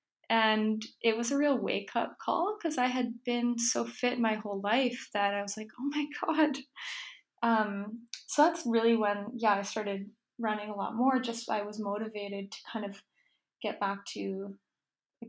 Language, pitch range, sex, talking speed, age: English, 205-245 Hz, female, 180 wpm, 10-29